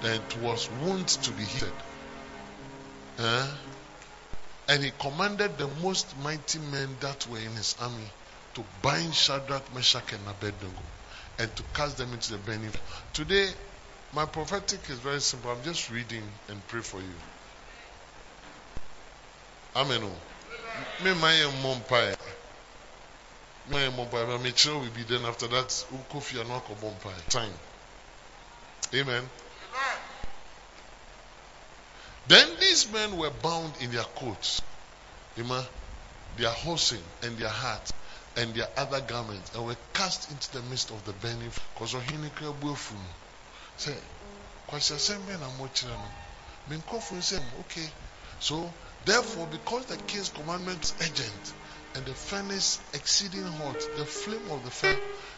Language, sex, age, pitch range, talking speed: English, male, 30-49, 110-155 Hz, 105 wpm